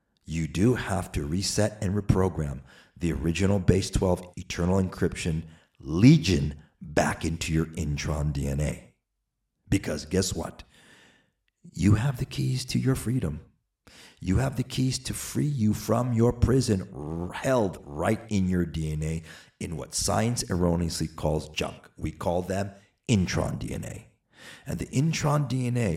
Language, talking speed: English, 135 wpm